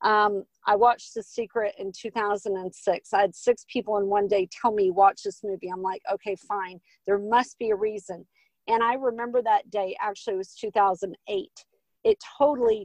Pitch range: 205-265 Hz